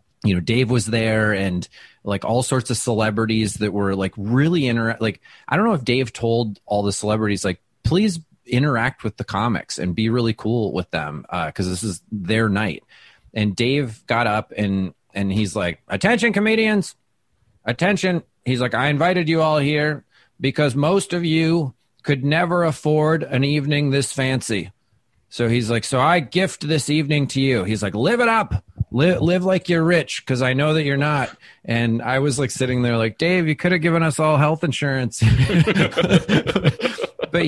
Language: English